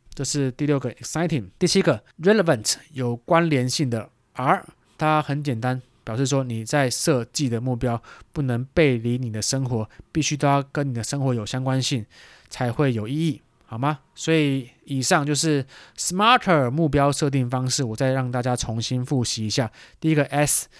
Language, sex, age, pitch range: Chinese, male, 20-39, 125-160 Hz